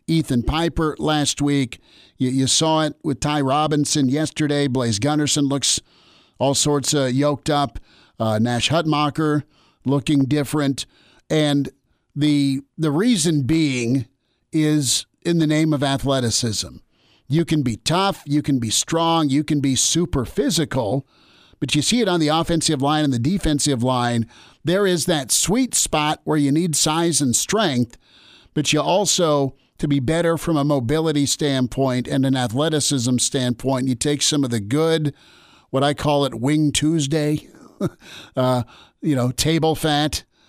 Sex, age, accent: male, 50-69, American